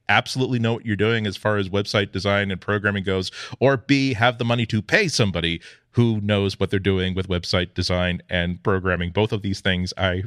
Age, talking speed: 40-59, 210 wpm